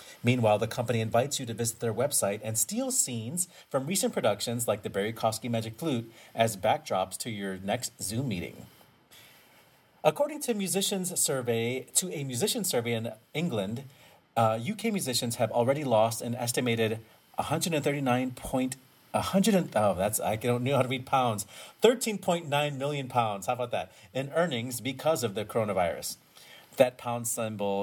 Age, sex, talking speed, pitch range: 30-49, male, 155 wpm, 110-145 Hz